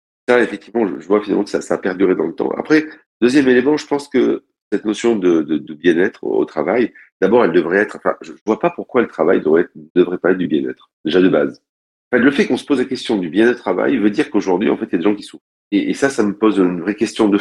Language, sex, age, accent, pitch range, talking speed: French, male, 40-59, French, 90-130 Hz, 290 wpm